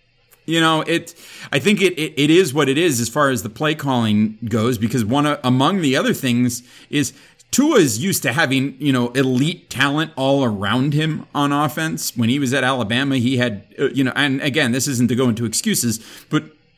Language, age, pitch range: English, 30-49, 120-155 Hz